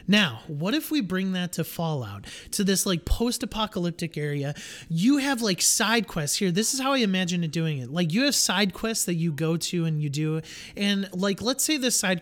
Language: English